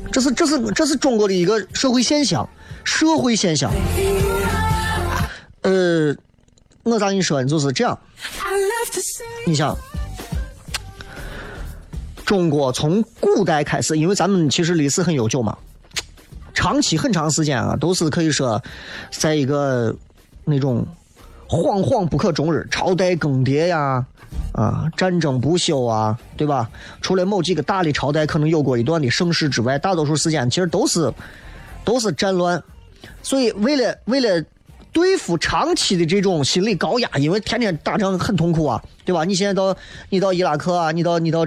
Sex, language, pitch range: male, Chinese, 140-190 Hz